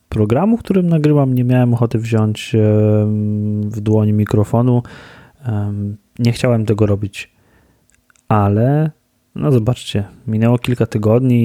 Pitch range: 105-125 Hz